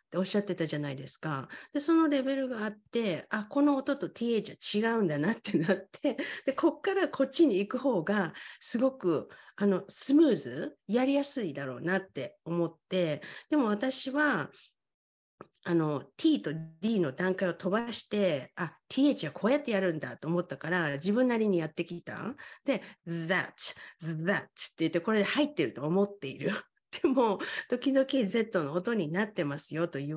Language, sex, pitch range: Japanese, female, 175-270 Hz